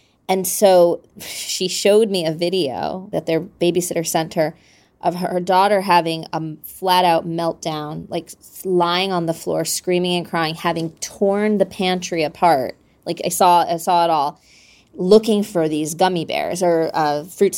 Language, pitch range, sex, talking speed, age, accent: English, 170-205 Hz, female, 165 wpm, 20-39, American